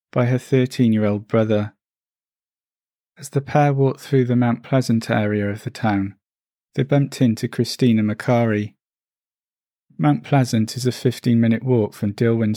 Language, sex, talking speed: English, male, 140 wpm